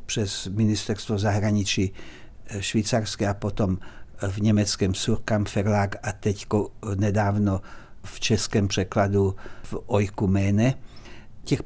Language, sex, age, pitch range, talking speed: Czech, male, 60-79, 105-125 Hz, 95 wpm